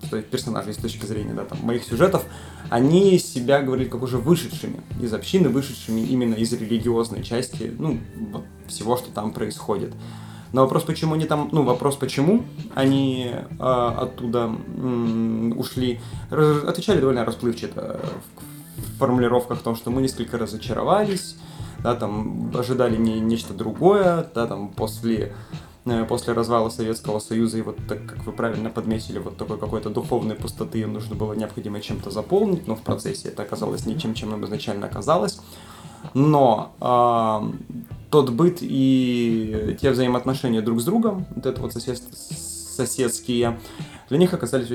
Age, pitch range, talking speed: 20-39, 110-130 Hz, 150 wpm